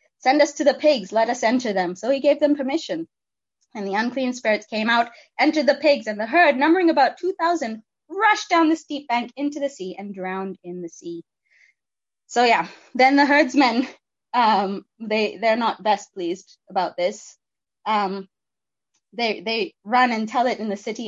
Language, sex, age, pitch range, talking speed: English, female, 20-39, 195-265 Hz, 180 wpm